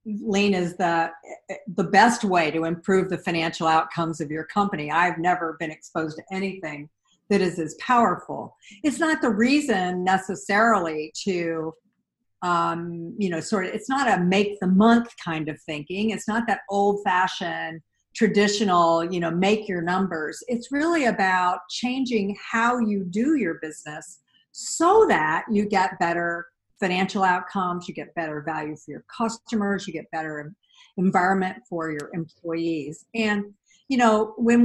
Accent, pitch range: American, 170-225 Hz